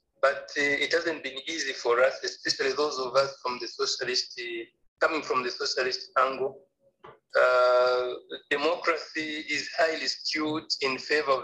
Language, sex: English, male